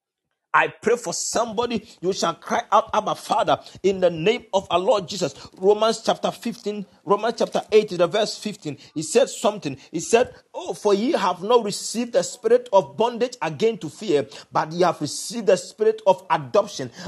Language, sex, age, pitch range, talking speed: English, male, 40-59, 175-225 Hz, 185 wpm